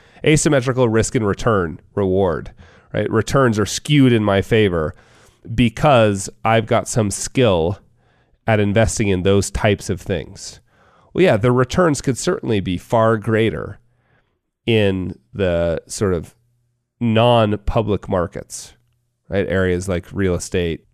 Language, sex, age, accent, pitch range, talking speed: English, male, 30-49, American, 95-125 Hz, 130 wpm